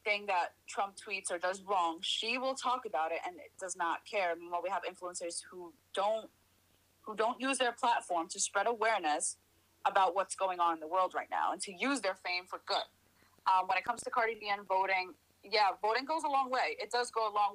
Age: 20-39